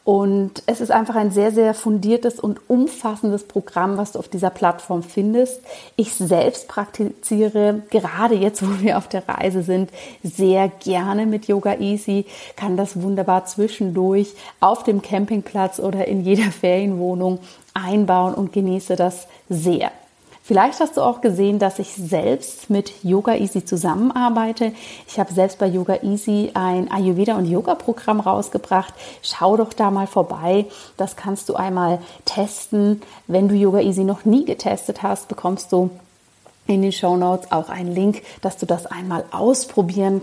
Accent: German